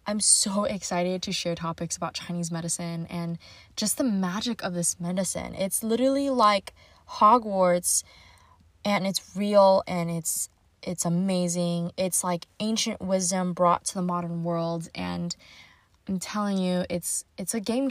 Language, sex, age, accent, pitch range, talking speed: English, female, 20-39, American, 170-195 Hz, 145 wpm